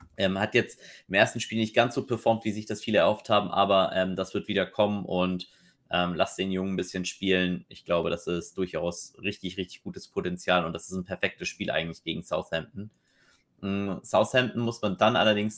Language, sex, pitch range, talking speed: German, male, 95-110 Hz, 205 wpm